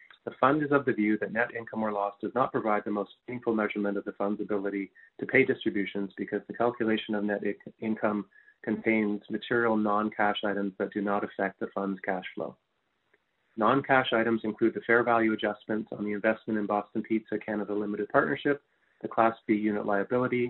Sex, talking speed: male, 185 wpm